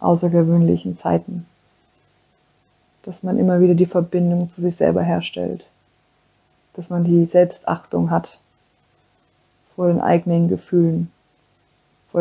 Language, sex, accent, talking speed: German, female, German, 110 wpm